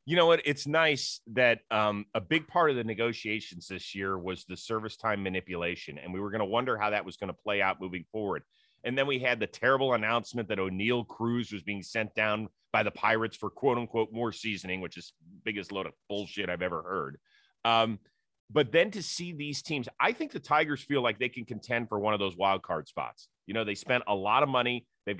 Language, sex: English, male